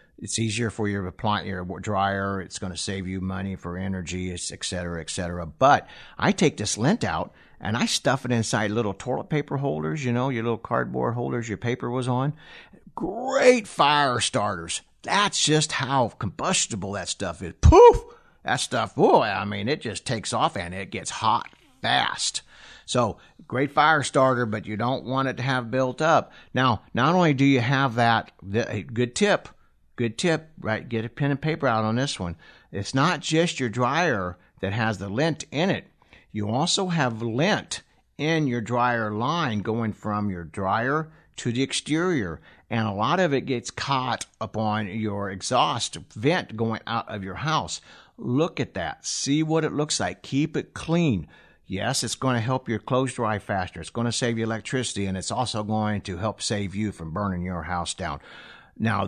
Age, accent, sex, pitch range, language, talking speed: 50-69, American, male, 100-135 Hz, English, 185 wpm